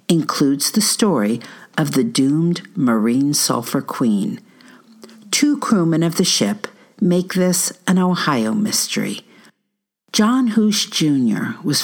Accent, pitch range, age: American, 150-220 Hz, 60-79